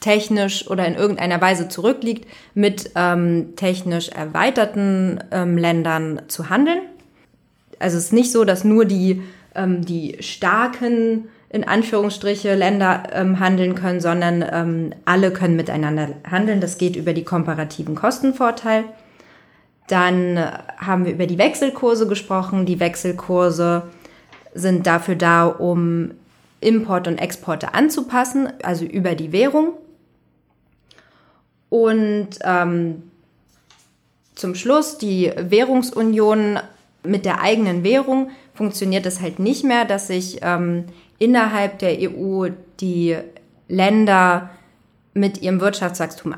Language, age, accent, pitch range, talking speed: German, 20-39, German, 175-215 Hz, 115 wpm